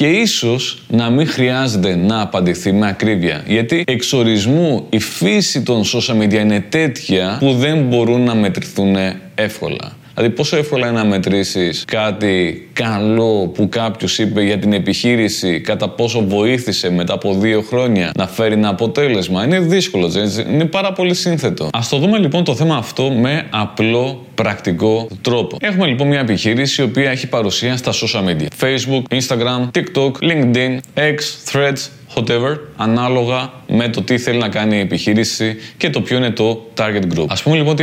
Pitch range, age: 105-140 Hz, 20-39